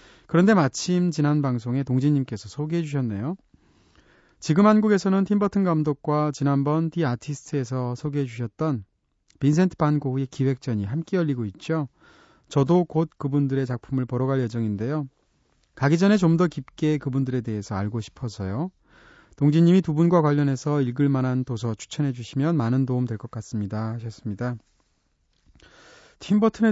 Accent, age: native, 30-49